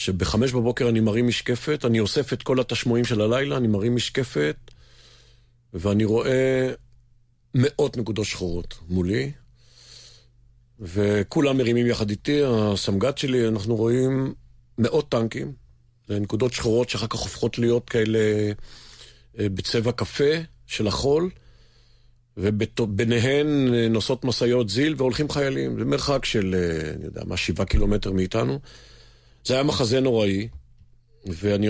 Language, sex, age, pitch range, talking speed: Hebrew, male, 50-69, 105-125 Hz, 115 wpm